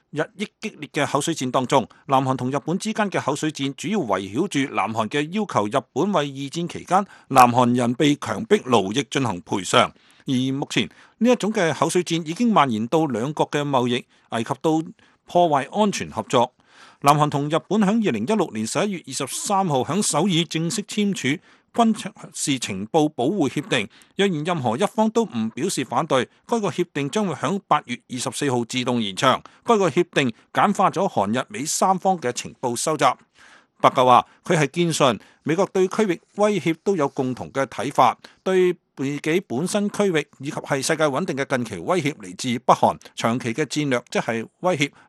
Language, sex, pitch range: English, male, 135-195 Hz